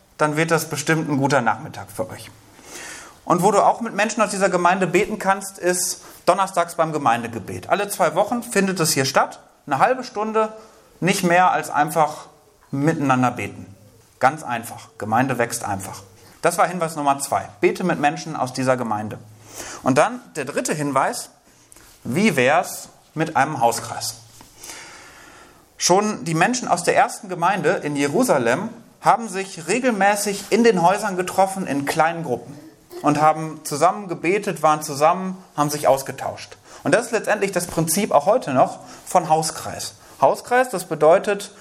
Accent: German